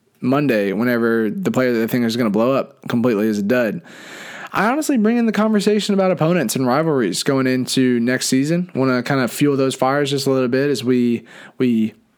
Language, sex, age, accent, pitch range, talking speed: English, male, 20-39, American, 125-150 Hz, 215 wpm